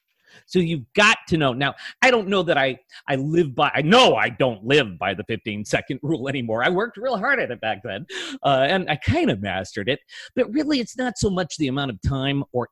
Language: English